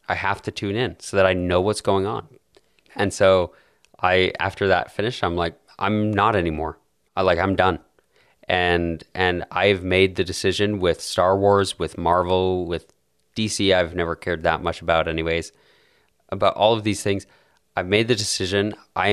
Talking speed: 180 wpm